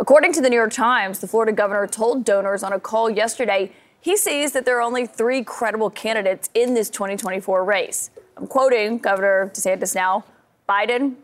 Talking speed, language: 180 wpm, English